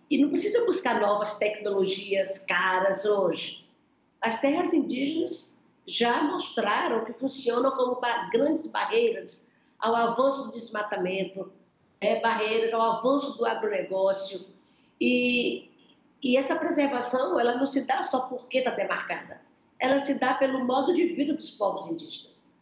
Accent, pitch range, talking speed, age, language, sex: Brazilian, 215-290 Hz, 135 wpm, 50-69, Portuguese, female